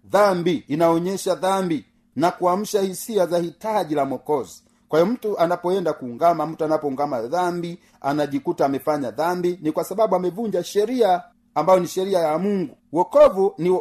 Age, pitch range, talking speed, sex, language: 40-59, 170-210 Hz, 145 wpm, male, Swahili